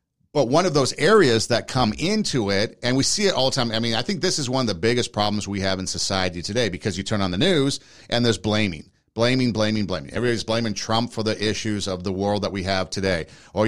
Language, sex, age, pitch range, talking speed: English, male, 50-69, 105-130 Hz, 255 wpm